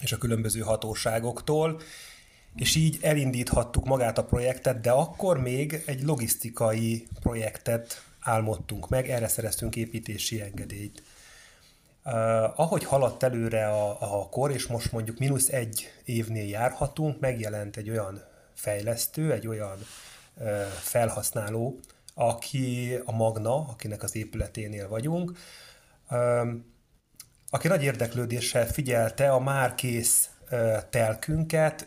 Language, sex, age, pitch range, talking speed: Hungarian, male, 30-49, 110-135 Hz, 105 wpm